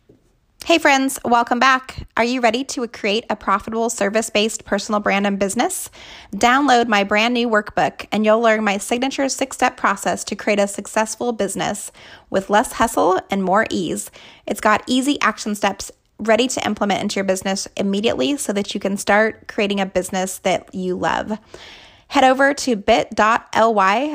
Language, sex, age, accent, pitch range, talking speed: English, female, 20-39, American, 200-240 Hz, 165 wpm